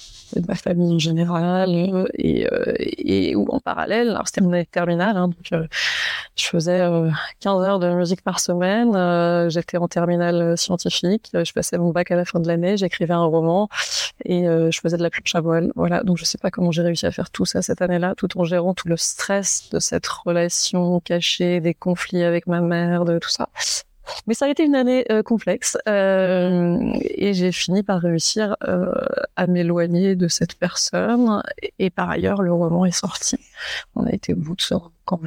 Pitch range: 170-195 Hz